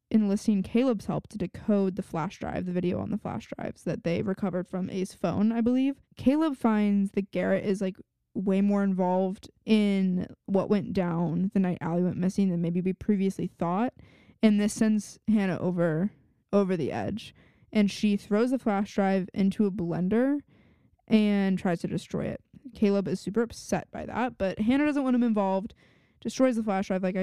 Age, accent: 20-39, American